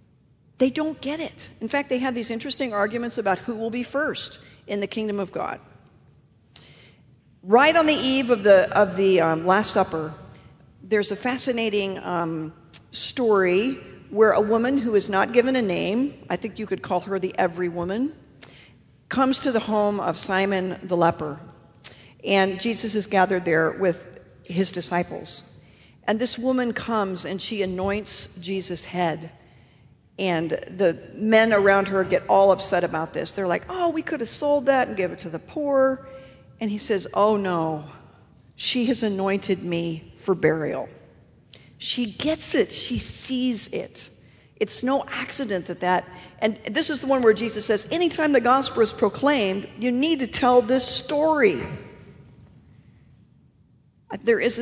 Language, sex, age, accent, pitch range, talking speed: English, female, 50-69, American, 175-245 Hz, 160 wpm